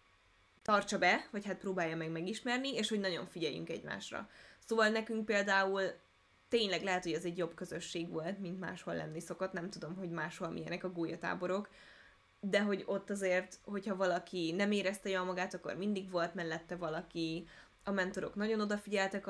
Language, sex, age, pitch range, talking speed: Hungarian, female, 10-29, 175-210 Hz, 165 wpm